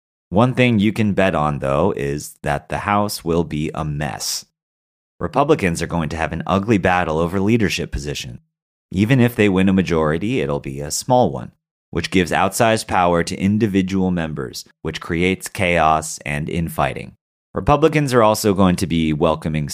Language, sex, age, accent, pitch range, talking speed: English, male, 30-49, American, 85-115 Hz, 170 wpm